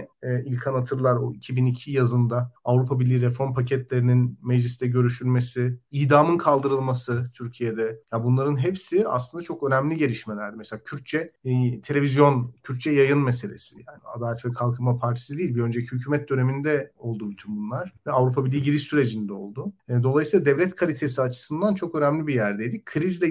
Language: Turkish